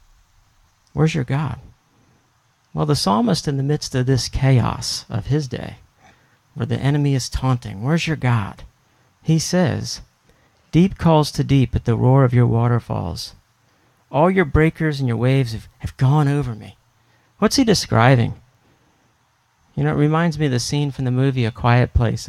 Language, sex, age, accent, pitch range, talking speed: English, male, 50-69, American, 115-145 Hz, 170 wpm